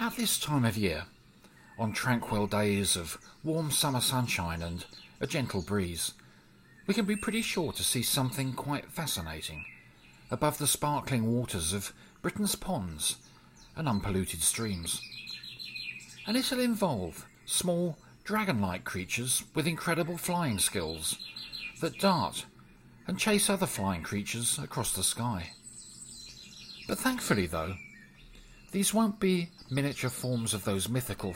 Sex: male